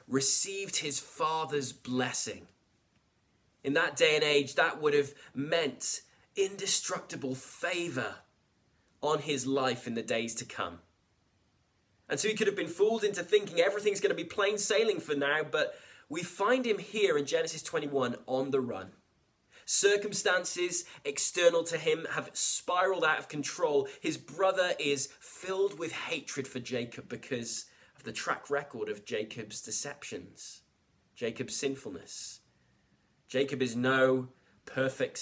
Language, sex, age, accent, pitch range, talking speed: English, male, 20-39, British, 115-165 Hz, 140 wpm